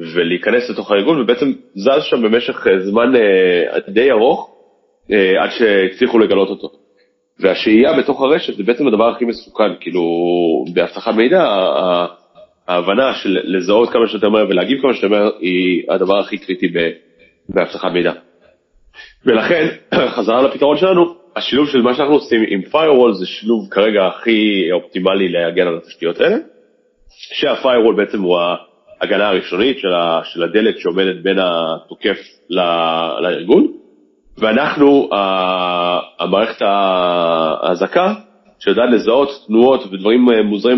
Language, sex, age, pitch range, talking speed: Hebrew, male, 30-49, 90-135 Hz, 125 wpm